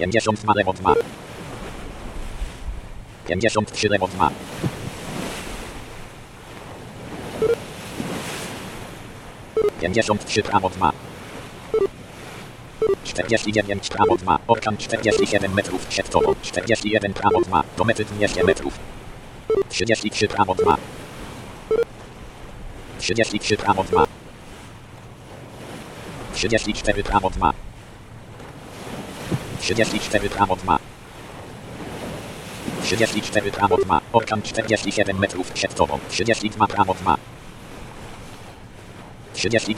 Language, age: Polish, 50-69